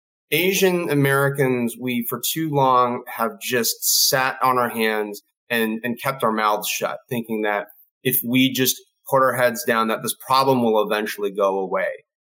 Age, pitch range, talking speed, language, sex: 30-49, 120-150 Hz, 165 wpm, English, male